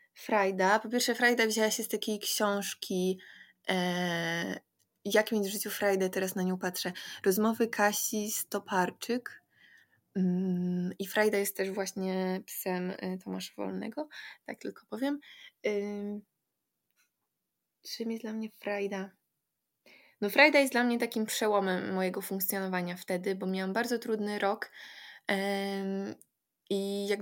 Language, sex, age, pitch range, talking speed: Polish, female, 20-39, 190-220 Hz, 130 wpm